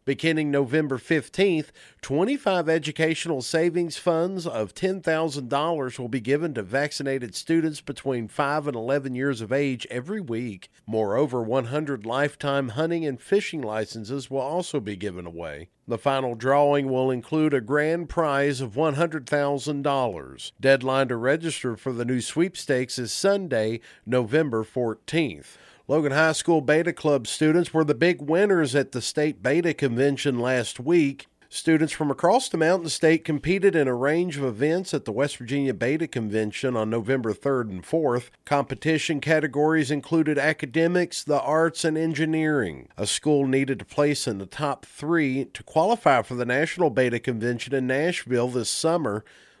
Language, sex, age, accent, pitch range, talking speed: English, male, 50-69, American, 130-160 Hz, 150 wpm